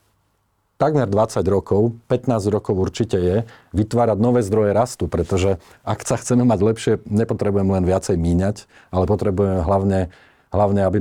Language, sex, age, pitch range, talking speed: Slovak, male, 40-59, 95-115 Hz, 140 wpm